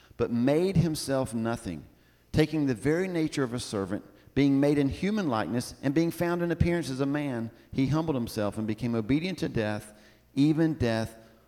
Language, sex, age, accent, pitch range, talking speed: English, male, 50-69, American, 105-145 Hz, 180 wpm